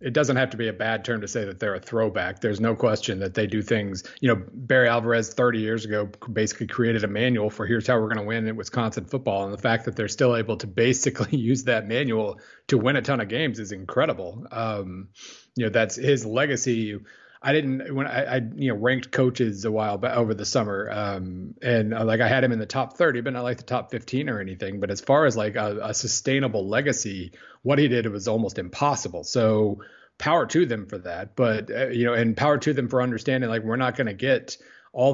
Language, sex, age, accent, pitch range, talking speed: English, male, 30-49, American, 110-130 Hz, 240 wpm